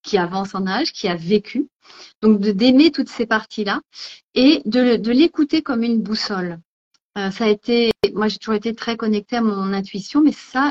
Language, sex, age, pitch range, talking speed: French, female, 30-49, 195-245 Hz, 195 wpm